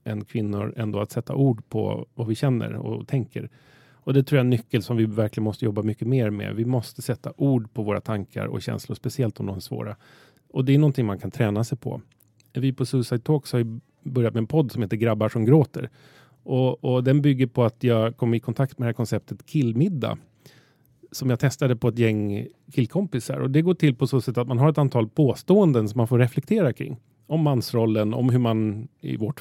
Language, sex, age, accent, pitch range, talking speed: Swedish, male, 30-49, native, 115-140 Hz, 230 wpm